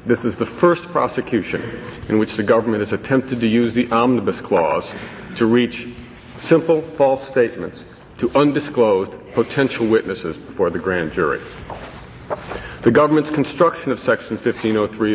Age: 50-69